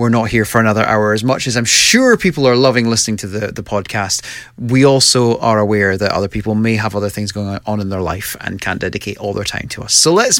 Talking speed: 260 wpm